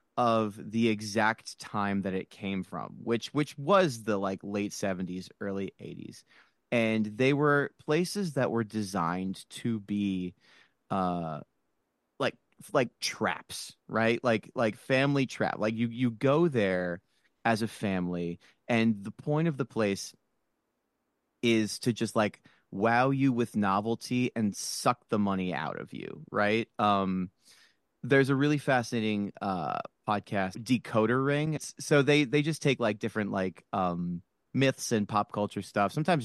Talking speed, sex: 145 wpm, male